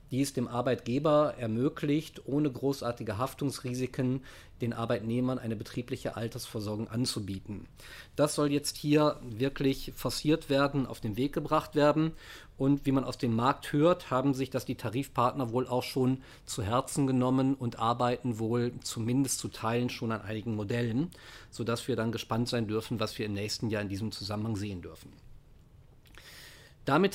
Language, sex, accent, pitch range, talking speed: German, male, German, 115-140 Hz, 155 wpm